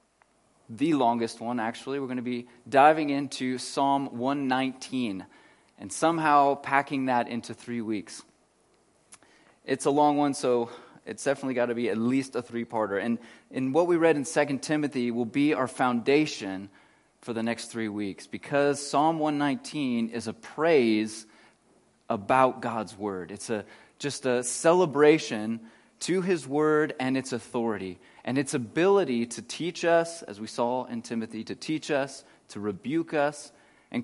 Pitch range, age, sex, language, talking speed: 115-145 Hz, 30-49, male, English, 155 wpm